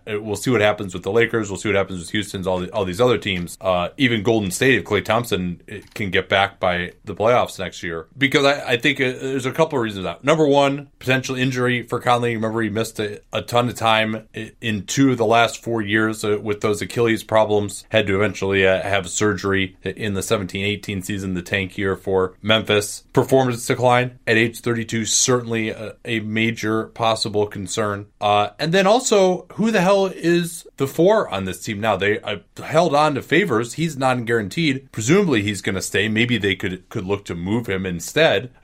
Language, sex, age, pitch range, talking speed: English, male, 20-39, 95-125 Hz, 205 wpm